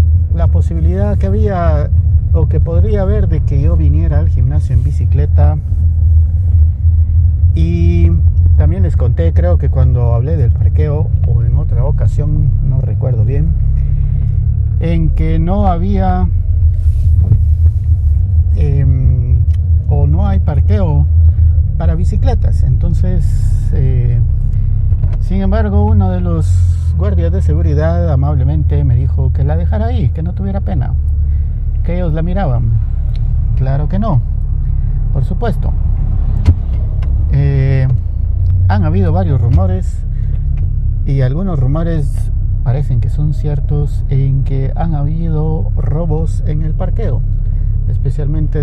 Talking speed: 115 wpm